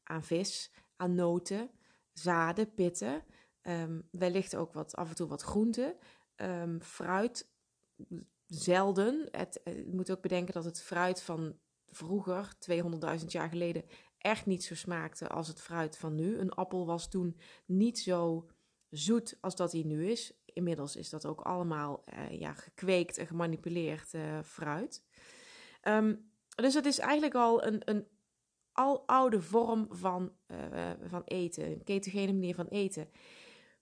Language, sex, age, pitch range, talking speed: Dutch, female, 20-39, 170-225 Hz, 150 wpm